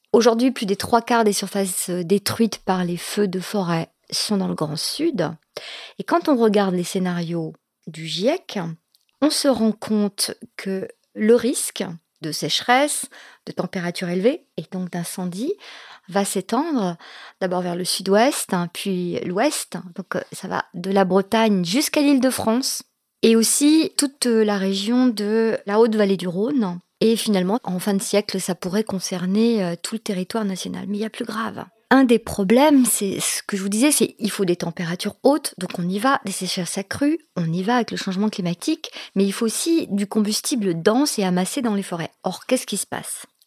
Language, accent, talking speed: French, French, 180 wpm